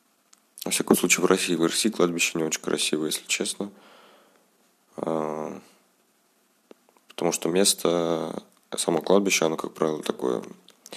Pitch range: 85-95 Hz